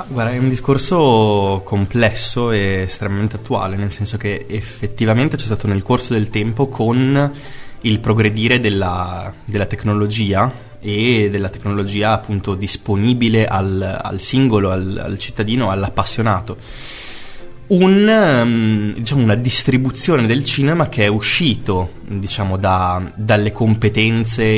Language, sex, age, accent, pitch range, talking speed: Italian, male, 20-39, native, 100-120 Hz, 120 wpm